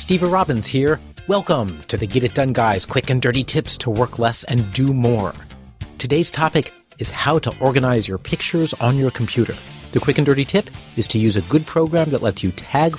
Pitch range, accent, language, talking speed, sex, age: 100-150 Hz, American, English, 215 wpm, male, 40-59